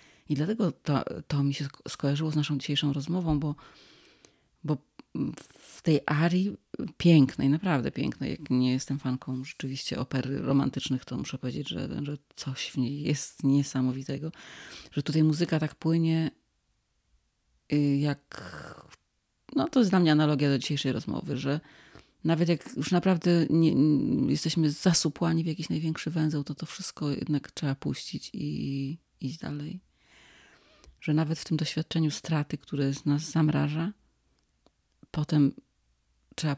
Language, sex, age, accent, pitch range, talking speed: Polish, female, 30-49, native, 135-160 Hz, 140 wpm